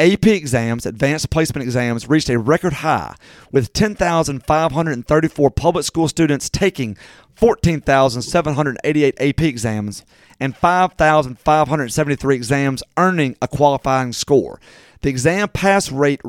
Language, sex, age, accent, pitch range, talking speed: English, male, 30-49, American, 135-170 Hz, 105 wpm